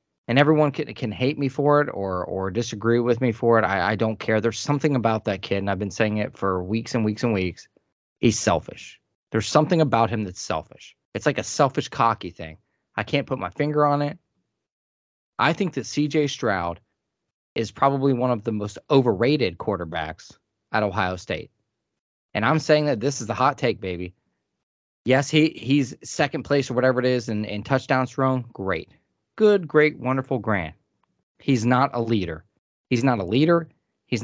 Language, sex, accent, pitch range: English, male, American, 110-145 Hz